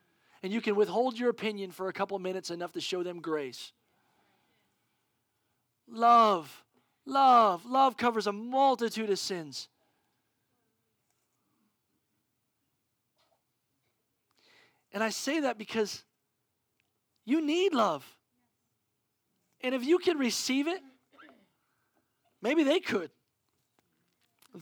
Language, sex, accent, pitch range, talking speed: English, male, American, 180-225 Hz, 100 wpm